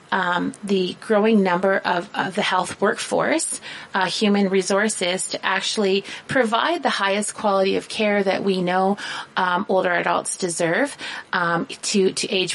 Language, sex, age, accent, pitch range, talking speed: English, female, 30-49, American, 190-245 Hz, 150 wpm